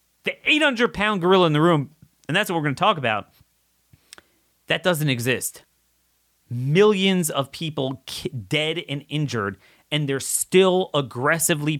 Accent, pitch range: American, 105-140 Hz